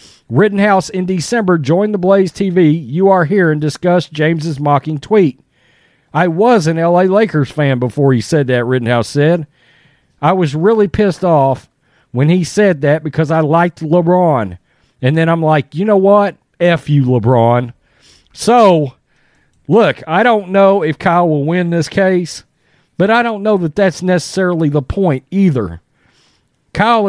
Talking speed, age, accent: 160 wpm, 40-59, American